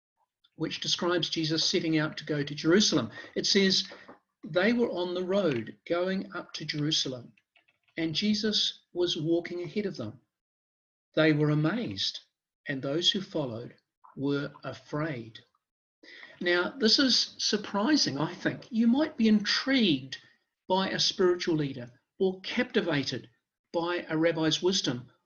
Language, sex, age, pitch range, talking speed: English, male, 50-69, 155-220 Hz, 135 wpm